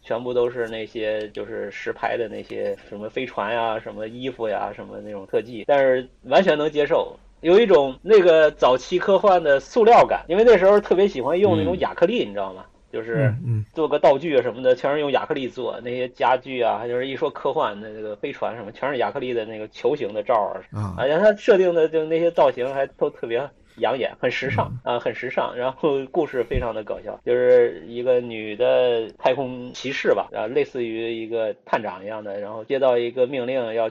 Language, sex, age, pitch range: Chinese, male, 30-49, 115-165 Hz